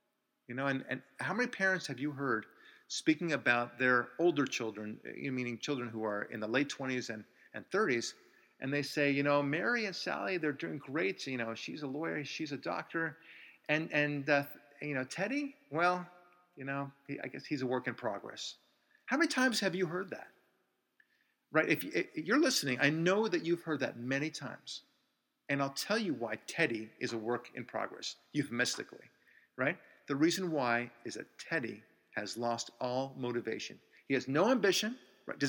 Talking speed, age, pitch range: 185 wpm, 40-59, 130-180 Hz